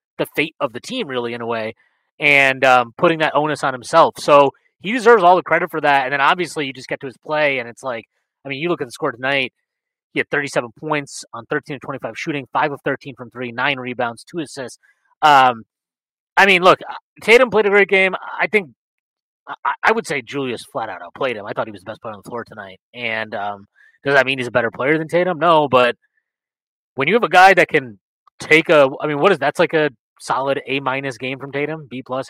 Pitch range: 130-170 Hz